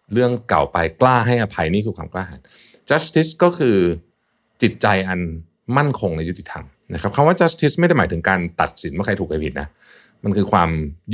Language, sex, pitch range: Thai, male, 90-135 Hz